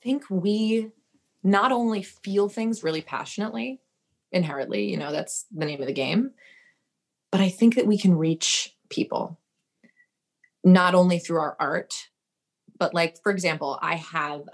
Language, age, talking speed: English, 20-39, 150 wpm